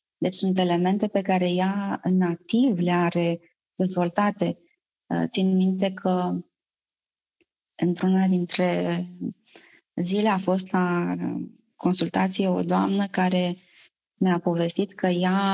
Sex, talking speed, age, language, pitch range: female, 110 wpm, 20-39, Romanian, 175-200 Hz